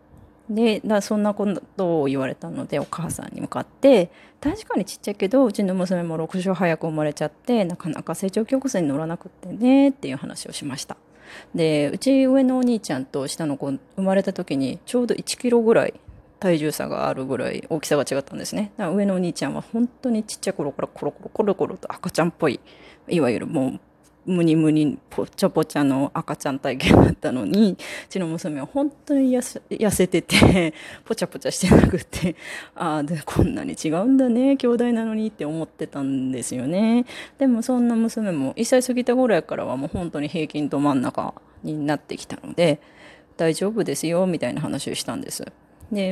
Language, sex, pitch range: Japanese, female, 150-230 Hz